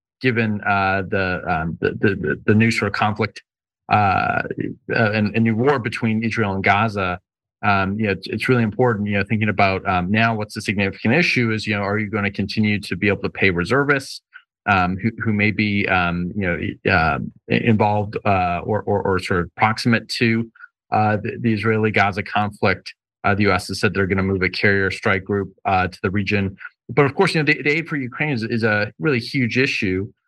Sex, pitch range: male, 95-115 Hz